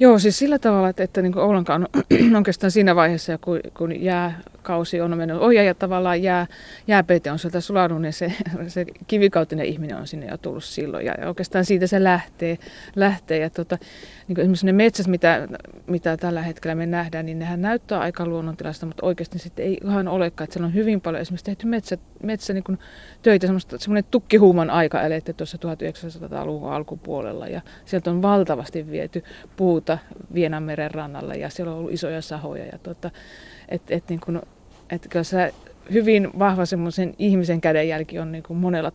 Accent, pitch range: native, 165-195 Hz